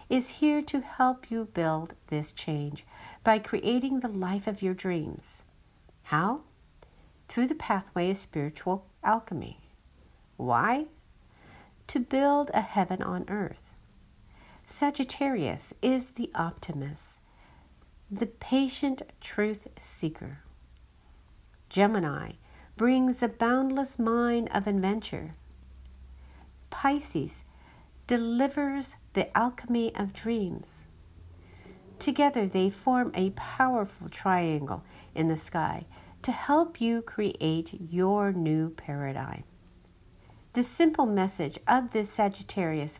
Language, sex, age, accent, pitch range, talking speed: English, female, 50-69, American, 140-240 Hz, 100 wpm